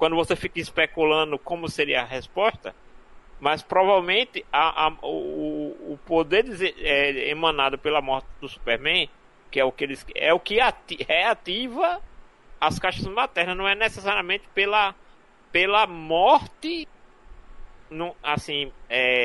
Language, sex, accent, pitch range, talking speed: Portuguese, male, Brazilian, 145-200 Hz, 140 wpm